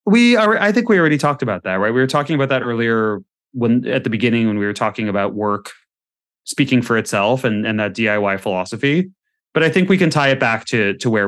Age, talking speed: 30-49, 240 wpm